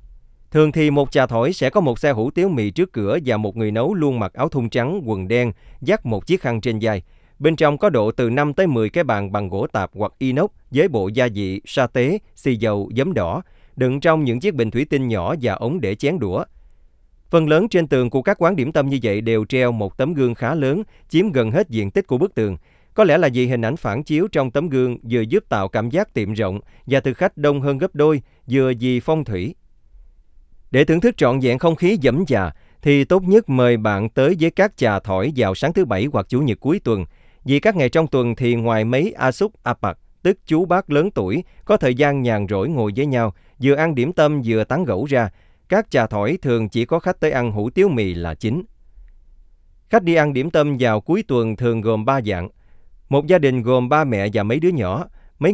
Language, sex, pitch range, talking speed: Vietnamese, male, 110-150 Hz, 240 wpm